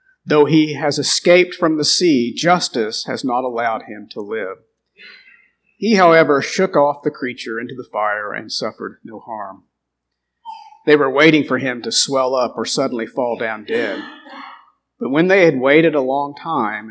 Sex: male